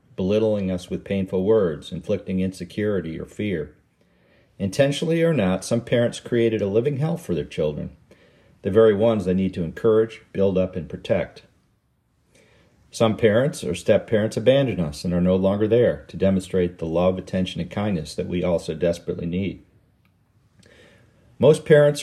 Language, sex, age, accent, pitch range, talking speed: English, male, 50-69, American, 90-115 Hz, 155 wpm